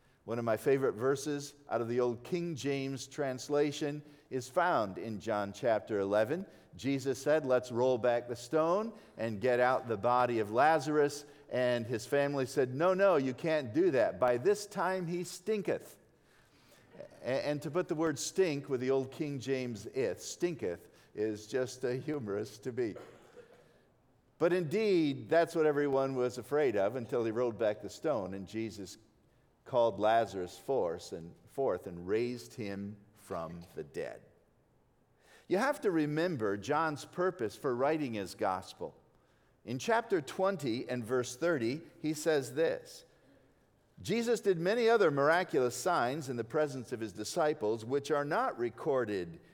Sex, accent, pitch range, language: male, American, 120-170 Hz, English